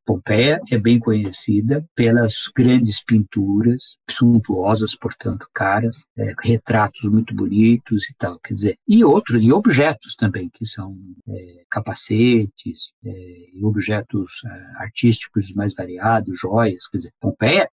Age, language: 50-69, Portuguese